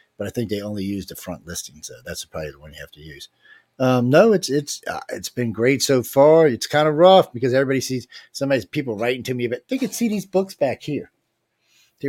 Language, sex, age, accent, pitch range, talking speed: English, male, 40-59, American, 110-140 Hz, 250 wpm